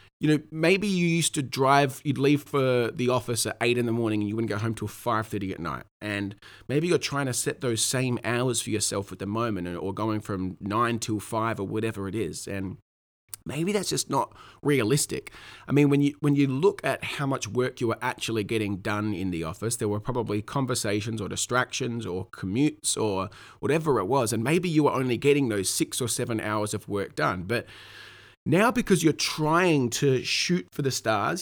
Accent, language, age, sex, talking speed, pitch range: Australian, English, 30-49, male, 215 wpm, 105-140 Hz